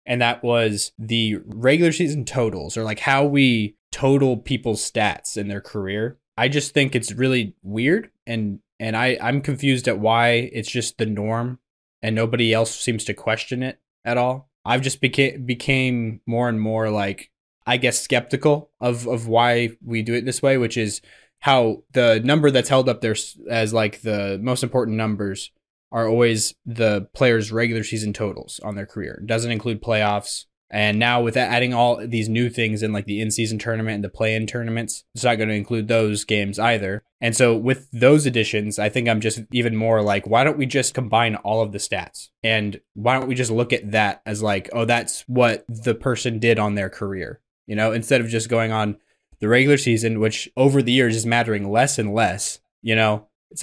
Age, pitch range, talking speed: 20-39, 110-125 Hz, 200 wpm